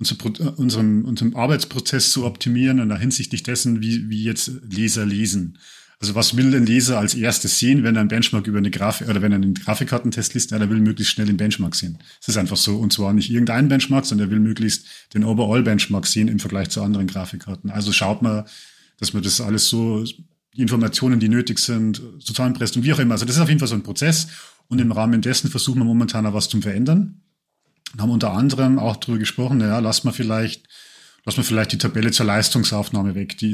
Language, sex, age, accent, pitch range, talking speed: German, male, 40-59, German, 105-125 Hz, 220 wpm